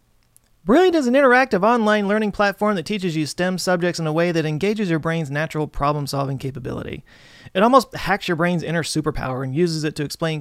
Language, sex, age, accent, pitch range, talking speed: English, male, 30-49, American, 155-205 Hz, 195 wpm